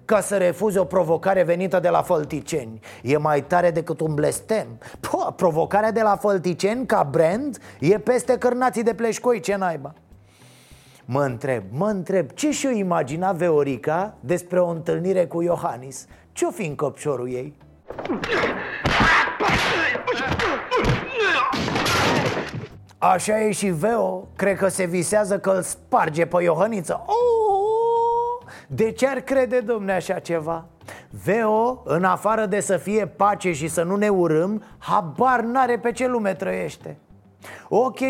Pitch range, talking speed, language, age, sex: 160-210 Hz, 135 wpm, Romanian, 30-49, male